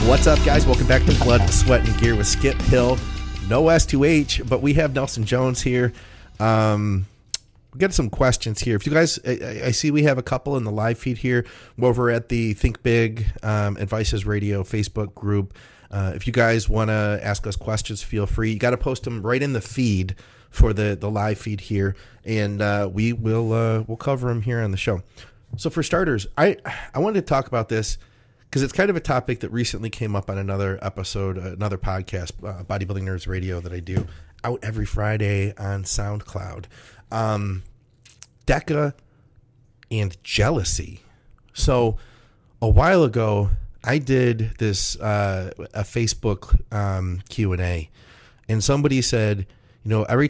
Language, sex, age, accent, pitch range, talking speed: English, male, 30-49, American, 100-120 Hz, 180 wpm